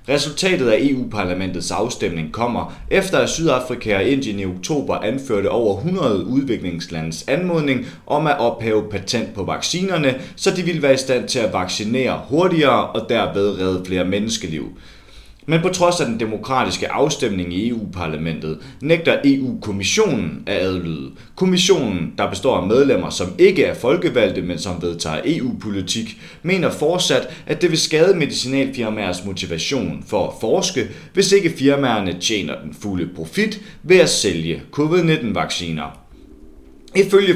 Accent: native